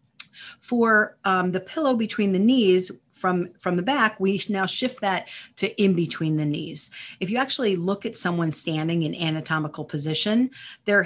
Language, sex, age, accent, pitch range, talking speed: English, female, 40-59, American, 165-210 Hz, 170 wpm